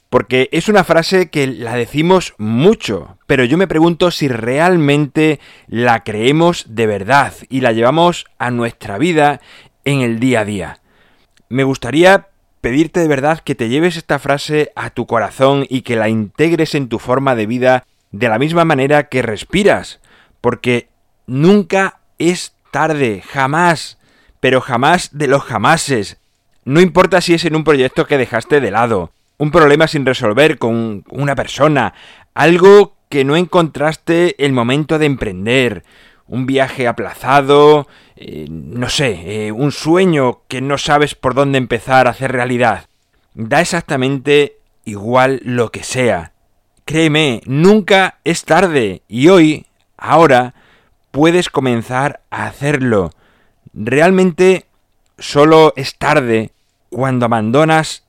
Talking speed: 140 wpm